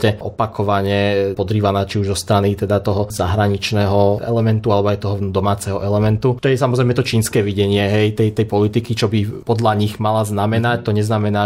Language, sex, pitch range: Slovak, male, 100-115 Hz